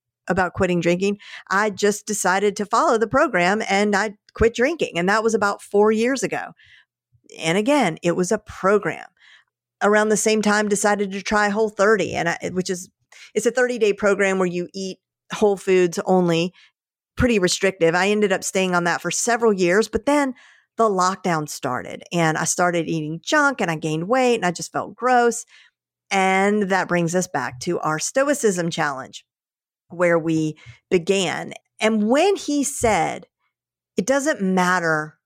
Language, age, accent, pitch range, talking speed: English, 50-69, American, 175-225 Hz, 165 wpm